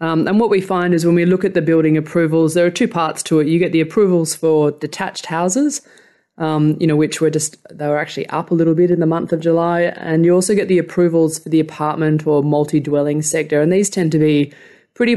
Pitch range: 150-170 Hz